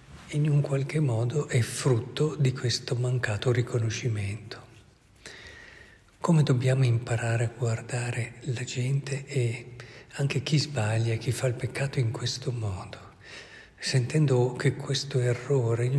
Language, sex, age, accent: Italian, male, 50-69, native